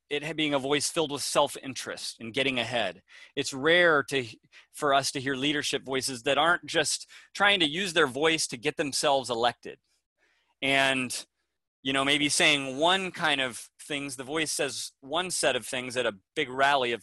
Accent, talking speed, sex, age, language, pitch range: American, 185 wpm, male, 30-49, English, 120-145 Hz